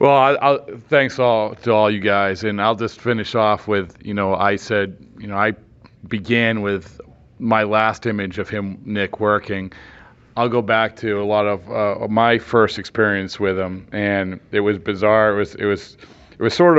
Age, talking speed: 40-59, 195 wpm